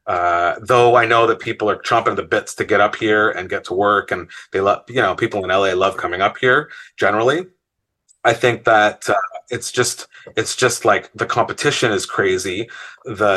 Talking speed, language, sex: 200 wpm, English, male